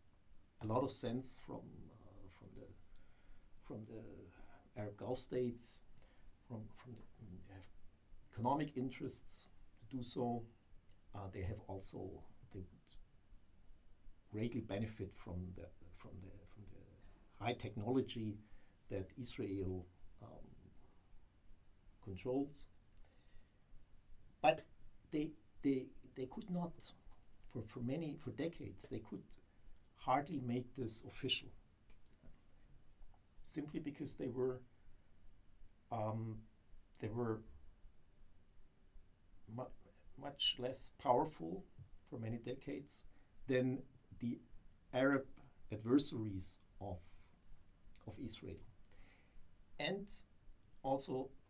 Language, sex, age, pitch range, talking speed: Danish, male, 60-79, 95-125 Hz, 95 wpm